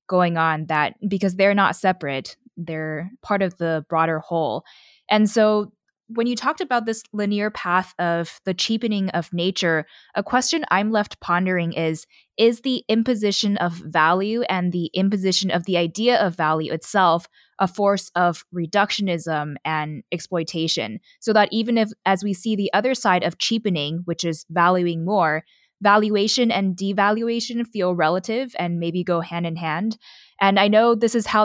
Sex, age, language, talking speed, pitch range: female, 20-39, English, 165 wpm, 165-205 Hz